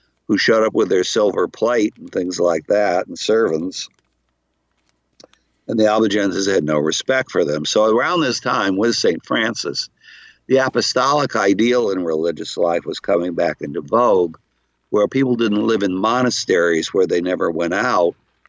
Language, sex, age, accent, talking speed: English, male, 60-79, American, 160 wpm